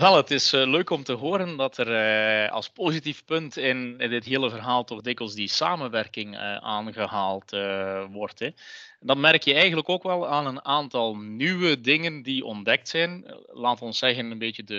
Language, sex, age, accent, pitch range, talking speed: Dutch, male, 30-49, Dutch, 115-160 Hz, 160 wpm